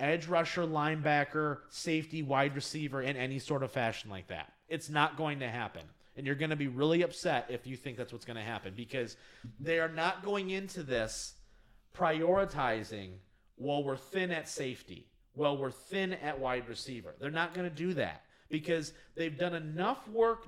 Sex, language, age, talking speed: male, English, 30-49, 185 wpm